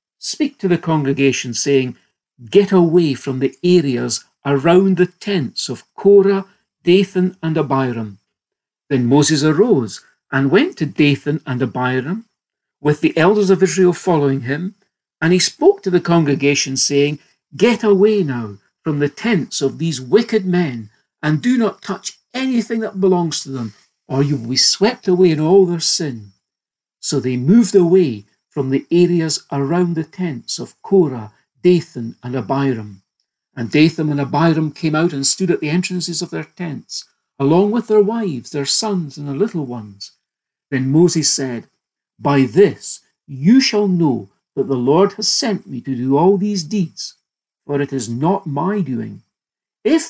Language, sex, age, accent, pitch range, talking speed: English, male, 60-79, British, 135-190 Hz, 160 wpm